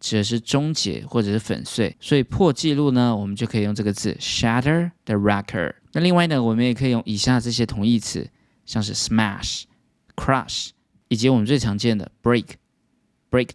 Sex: male